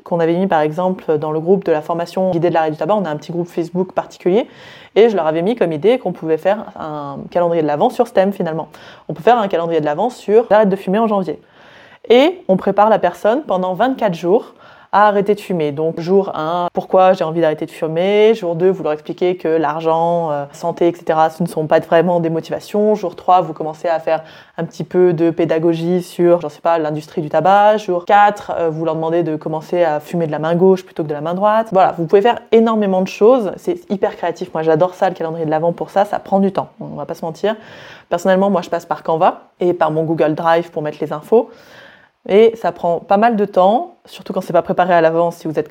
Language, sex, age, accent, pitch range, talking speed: French, female, 20-39, French, 165-200 Hz, 250 wpm